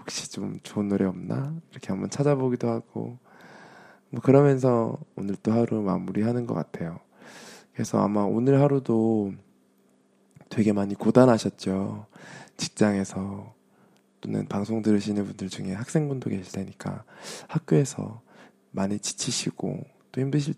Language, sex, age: Korean, male, 20-39